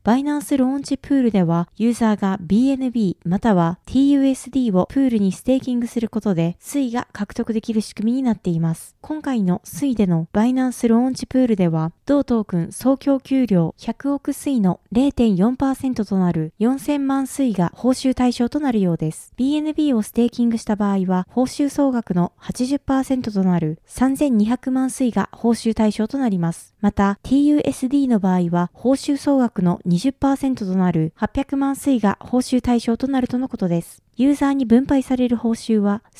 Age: 20-39